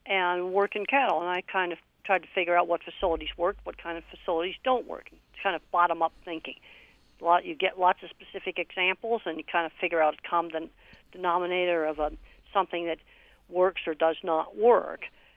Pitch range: 175-220 Hz